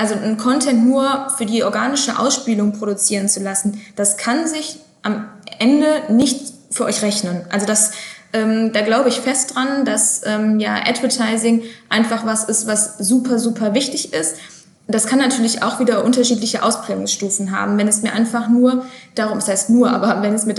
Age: 20-39